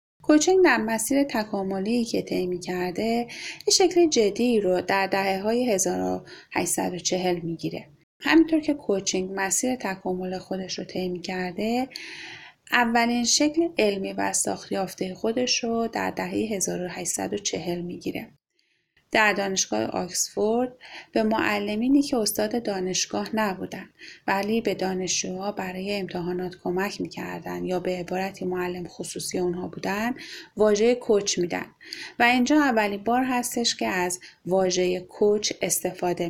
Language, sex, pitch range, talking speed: Persian, female, 180-235 Hz, 120 wpm